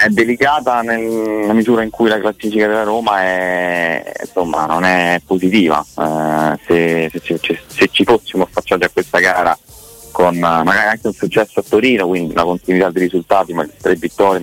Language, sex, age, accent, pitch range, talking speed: Italian, male, 20-39, native, 85-95 Hz, 175 wpm